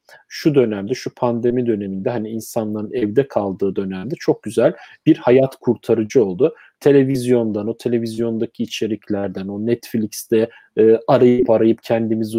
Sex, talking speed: male, 125 wpm